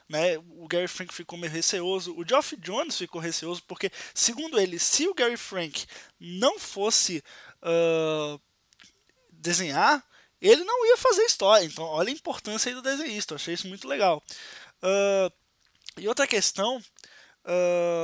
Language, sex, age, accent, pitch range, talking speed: Portuguese, male, 20-39, Brazilian, 170-240 Hz, 145 wpm